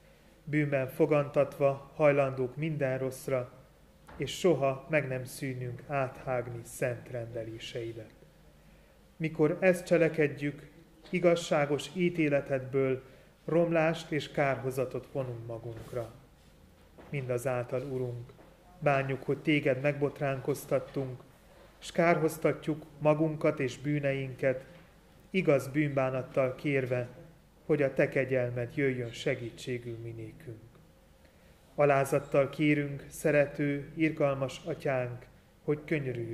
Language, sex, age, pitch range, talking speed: Hungarian, male, 30-49, 125-155 Hz, 85 wpm